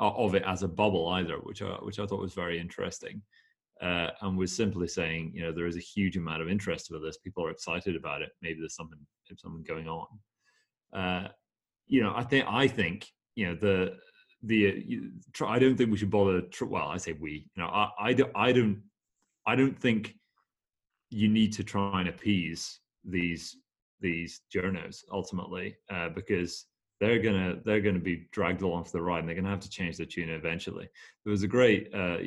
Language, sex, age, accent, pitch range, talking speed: English, male, 30-49, British, 85-110 Hz, 205 wpm